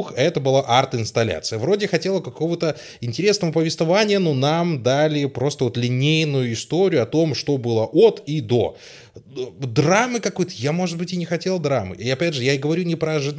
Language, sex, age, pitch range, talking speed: Russian, male, 20-39, 120-160 Hz, 175 wpm